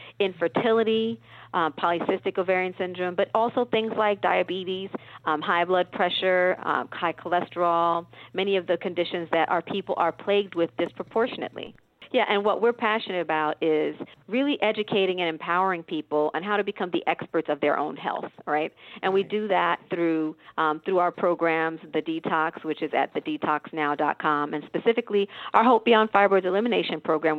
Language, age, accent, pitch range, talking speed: English, 50-69, American, 165-200 Hz, 160 wpm